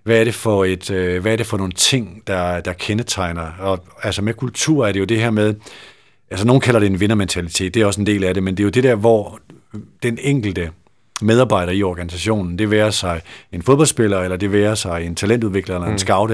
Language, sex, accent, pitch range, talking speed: Danish, male, native, 95-110 Hz, 230 wpm